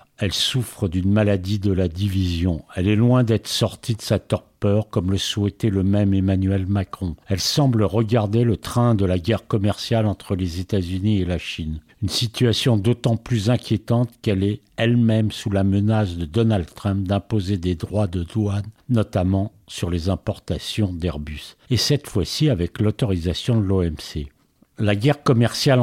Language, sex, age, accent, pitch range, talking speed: French, male, 50-69, French, 95-115 Hz, 165 wpm